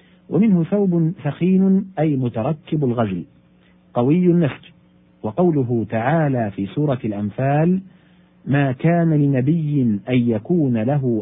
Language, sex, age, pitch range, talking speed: Arabic, male, 40-59, 120-165 Hz, 100 wpm